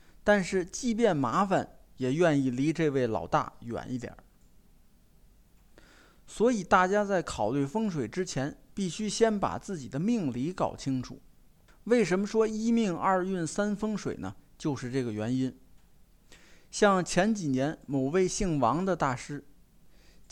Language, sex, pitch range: Chinese, male, 135-200 Hz